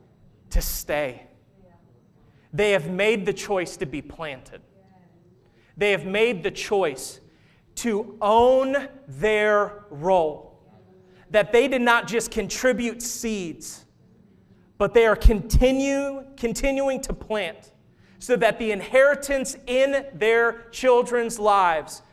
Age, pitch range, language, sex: 30-49, 200-250 Hz, English, male